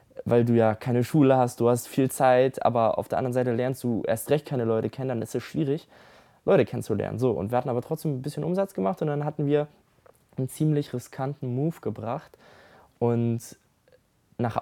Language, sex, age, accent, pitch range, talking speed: German, male, 20-39, German, 105-130 Hz, 200 wpm